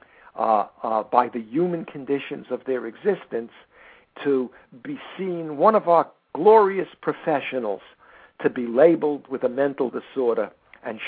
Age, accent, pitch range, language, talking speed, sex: 60-79, American, 115-170 Hz, English, 135 wpm, male